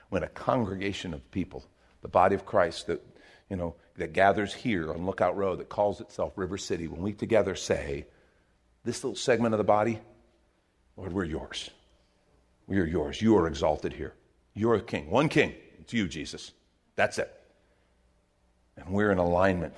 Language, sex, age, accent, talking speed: English, male, 50-69, American, 175 wpm